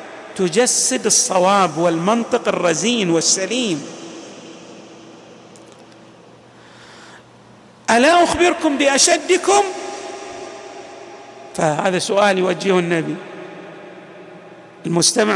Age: 50-69